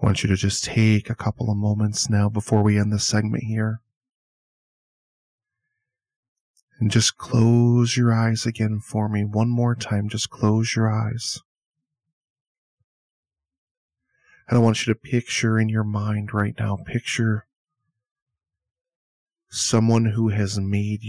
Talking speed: 135 wpm